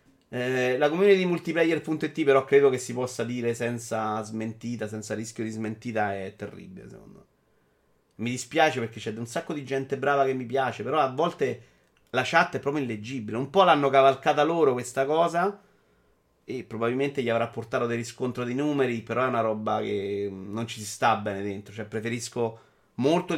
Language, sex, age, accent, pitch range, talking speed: Italian, male, 30-49, native, 115-160 Hz, 180 wpm